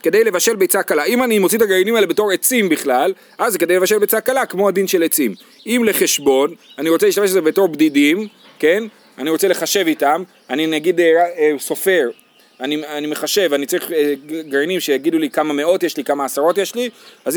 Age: 30-49